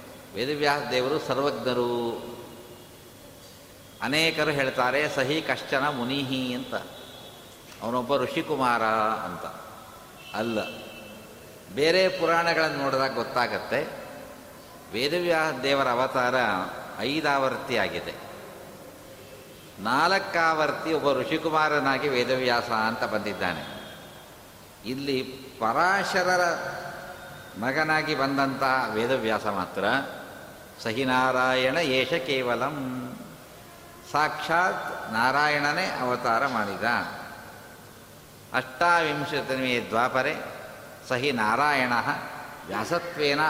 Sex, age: male, 60-79